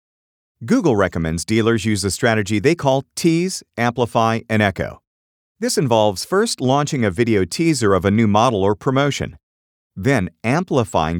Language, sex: English, male